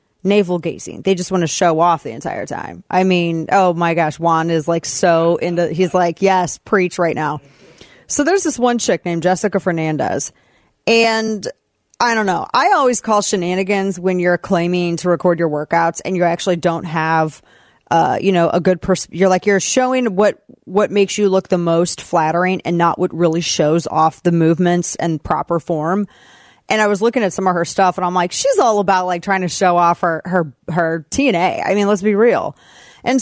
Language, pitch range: English, 170-220 Hz